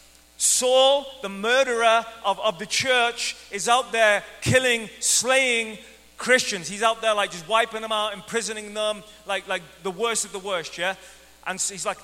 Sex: male